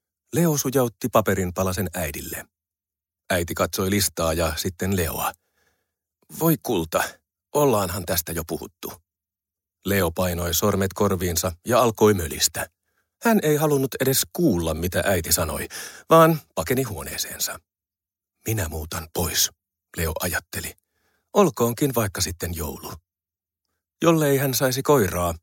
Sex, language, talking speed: male, Finnish, 115 wpm